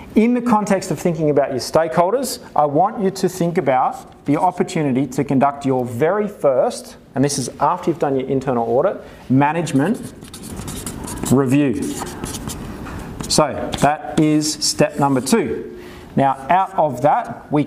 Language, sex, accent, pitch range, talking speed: English, male, Australian, 135-175 Hz, 145 wpm